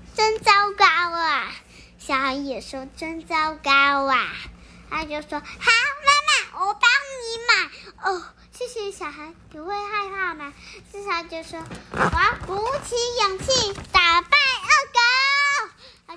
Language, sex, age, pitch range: Chinese, male, 10-29, 295-395 Hz